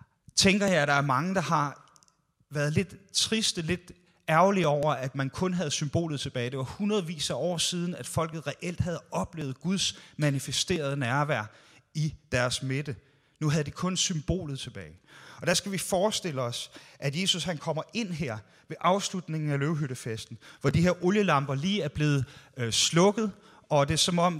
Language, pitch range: Danish, 140-190 Hz